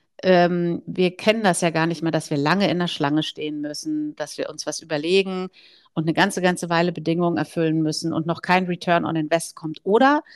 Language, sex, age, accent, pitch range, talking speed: German, female, 50-69, German, 160-195 Hz, 215 wpm